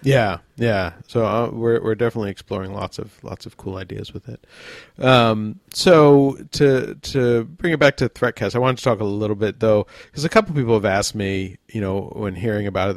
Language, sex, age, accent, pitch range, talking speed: English, male, 40-59, American, 95-115 Hz, 220 wpm